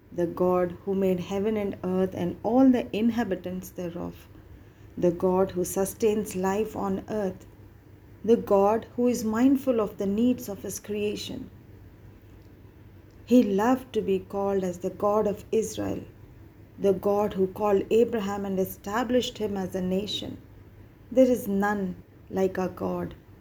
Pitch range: 170-220 Hz